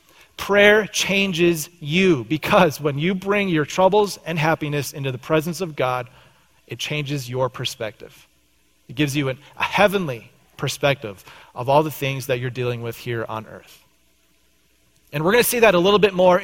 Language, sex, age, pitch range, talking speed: English, male, 30-49, 140-180 Hz, 170 wpm